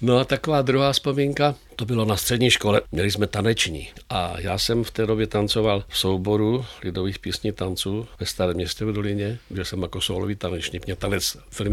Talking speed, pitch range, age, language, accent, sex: 195 wpm, 90-145 Hz, 60-79, Czech, native, male